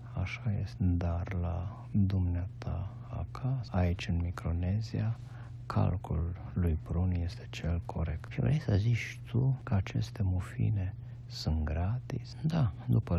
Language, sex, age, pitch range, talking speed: Romanian, male, 50-69, 90-120 Hz, 125 wpm